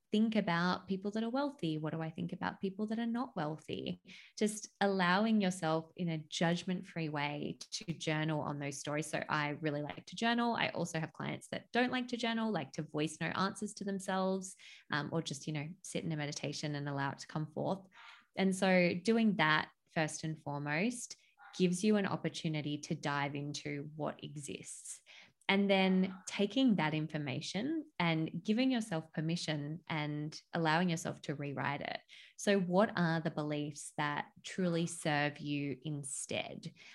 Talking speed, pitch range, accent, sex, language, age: 170 wpm, 150-190 Hz, Australian, female, English, 20-39